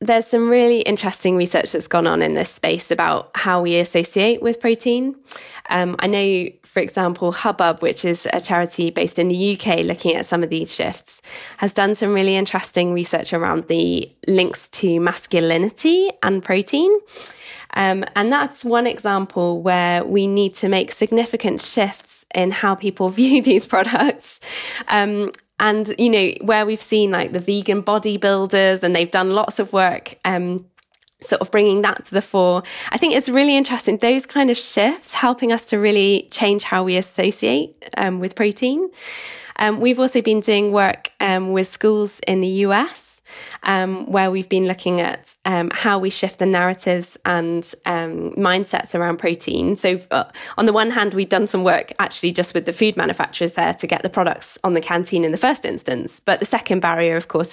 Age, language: 10-29, English